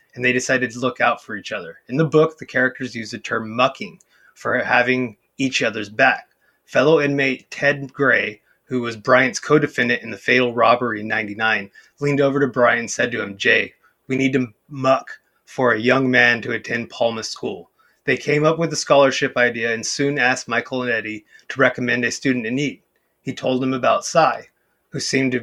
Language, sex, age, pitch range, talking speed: English, male, 30-49, 125-140 Hz, 200 wpm